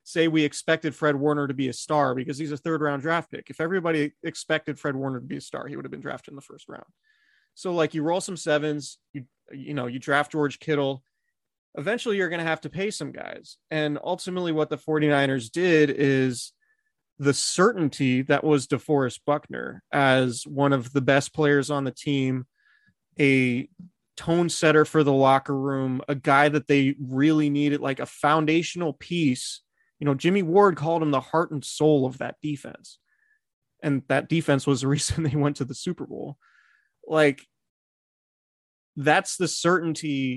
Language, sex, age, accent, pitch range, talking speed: English, male, 30-49, American, 135-160 Hz, 185 wpm